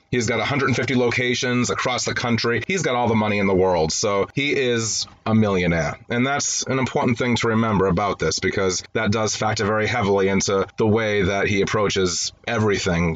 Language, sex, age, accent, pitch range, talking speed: English, male, 30-49, American, 100-120 Hz, 190 wpm